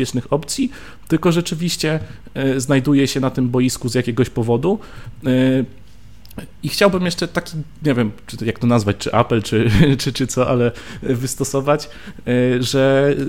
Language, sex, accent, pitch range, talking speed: Polish, male, native, 115-145 Hz, 130 wpm